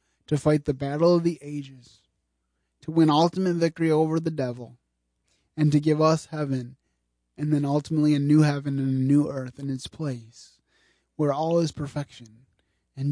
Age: 20-39